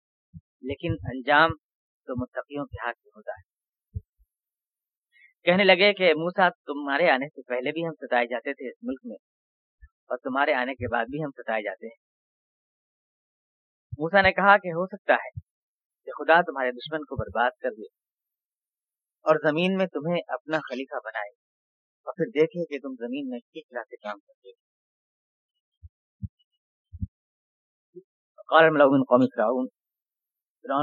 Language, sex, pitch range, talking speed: Urdu, female, 125-165 Hz, 135 wpm